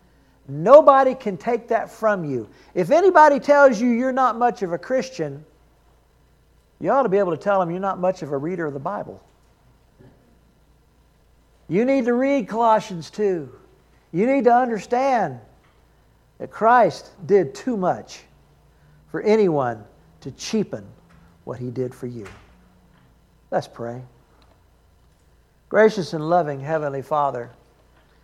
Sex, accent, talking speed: male, American, 135 wpm